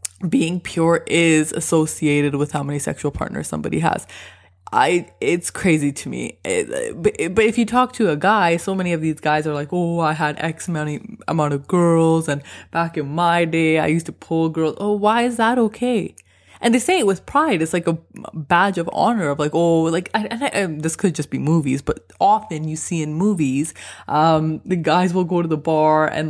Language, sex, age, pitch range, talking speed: English, female, 20-39, 145-175 Hz, 215 wpm